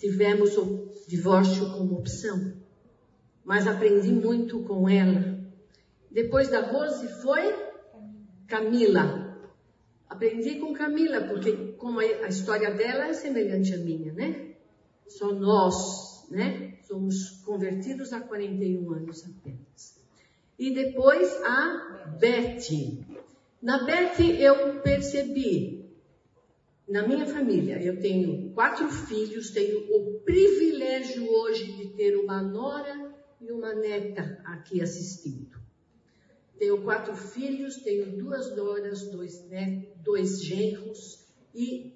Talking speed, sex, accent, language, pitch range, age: 110 wpm, female, Brazilian, Portuguese, 190-265 Hz, 50-69